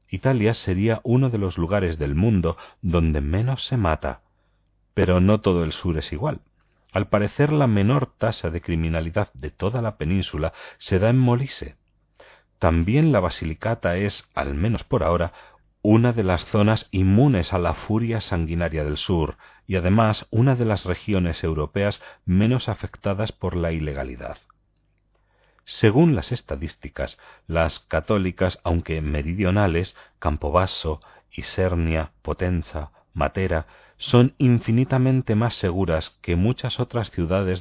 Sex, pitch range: male, 85-110 Hz